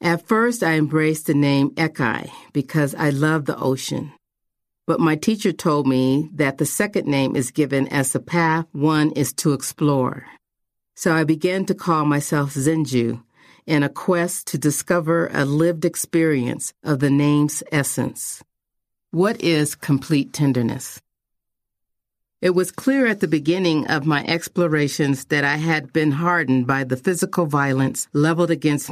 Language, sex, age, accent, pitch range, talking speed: English, female, 40-59, American, 135-165 Hz, 150 wpm